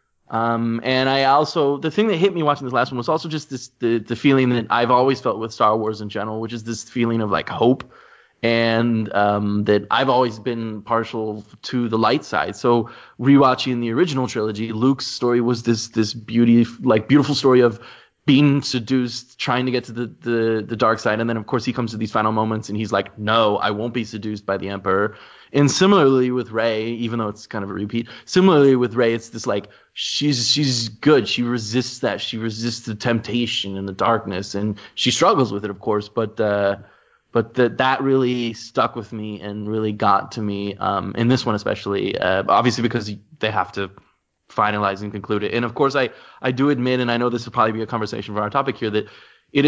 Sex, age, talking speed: male, 20-39, 220 wpm